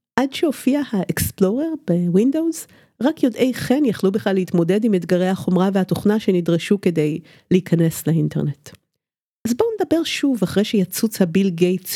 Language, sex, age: Hebrew, female, 50-69